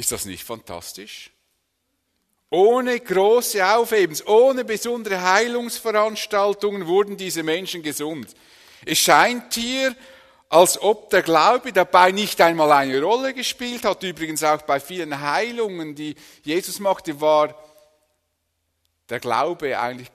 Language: English